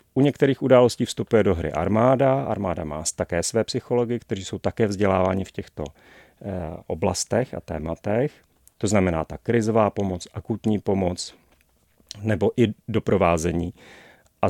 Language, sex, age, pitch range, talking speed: Czech, male, 40-59, 95-120 Hz, 130 wpm